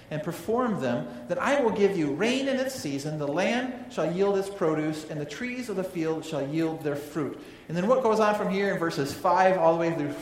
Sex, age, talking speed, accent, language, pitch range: male, 40-59, 245 wpm, American, English, 120-190 Hz